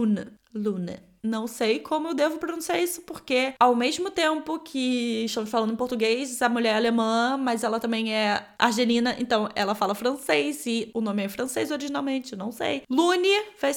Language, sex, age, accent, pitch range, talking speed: Portuguese, female, 20-39, Brazilian, 235-295 Hz, 180 wpm